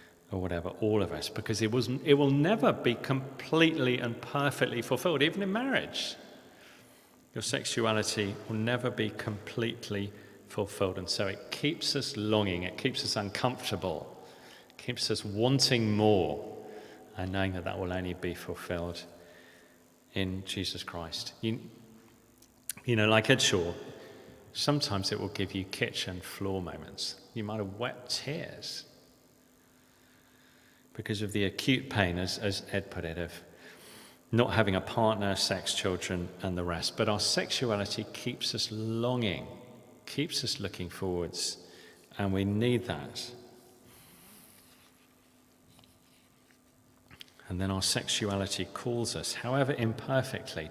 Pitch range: 95-120 Hz